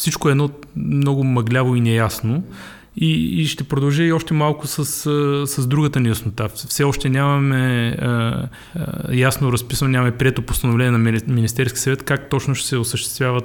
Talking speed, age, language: 165 wpm, 30-49, Bulgarian